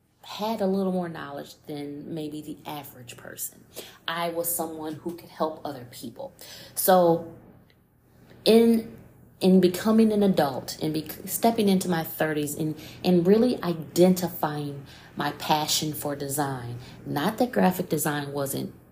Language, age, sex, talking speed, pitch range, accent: English, 30-49, female, 140 wpm, 145-175 Hz, American